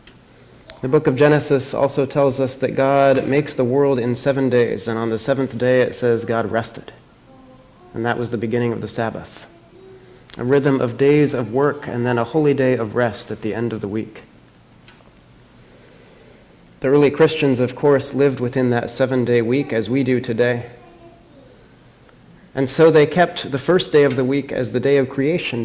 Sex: male